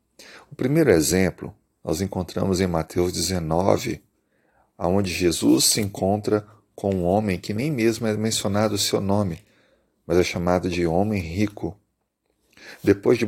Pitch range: 90-105 Hz